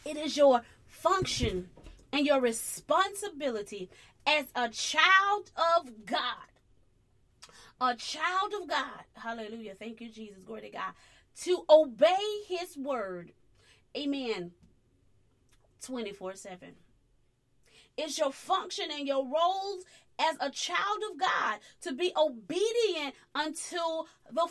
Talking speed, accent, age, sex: 110 wpm, American, 30-49, female